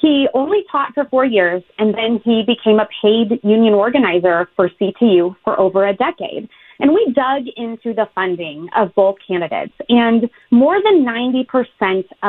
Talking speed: 160 wpm